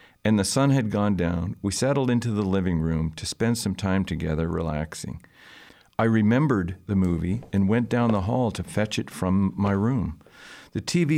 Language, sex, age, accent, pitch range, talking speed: English, male, 50-69, American, 85-115 Hz, 190 wpm